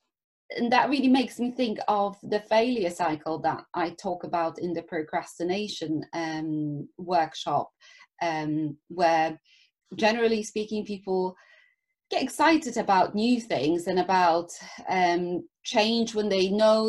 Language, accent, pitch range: English, British, 175-230 Hz